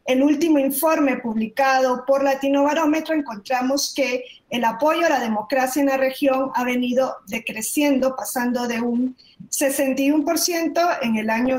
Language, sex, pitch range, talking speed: Spanish, female, 235-295 Hz, 140 wpm